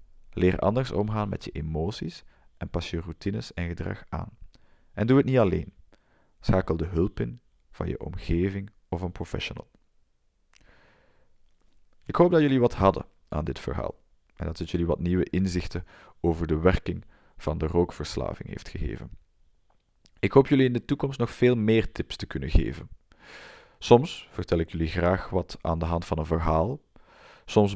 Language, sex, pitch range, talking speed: Dutch, male, 80-105 Hz, 170 wpm